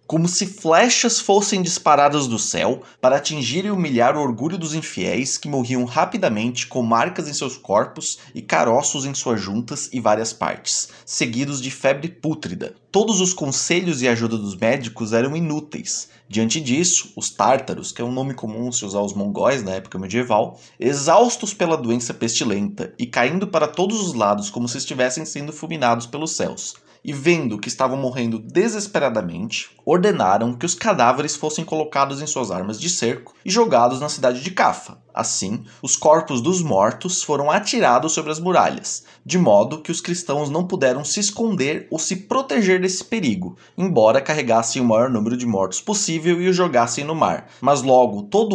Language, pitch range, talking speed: Portuguese, 125-180 Hz, 175 wpm